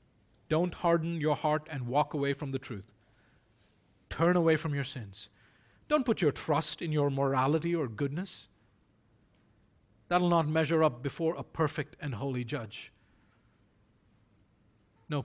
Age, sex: 40-59, male